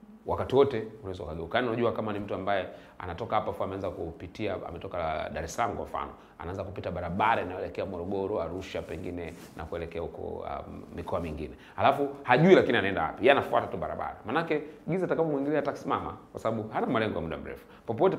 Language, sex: Swahili, male